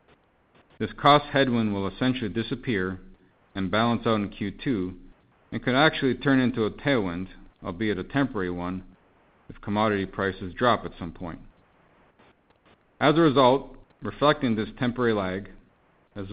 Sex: male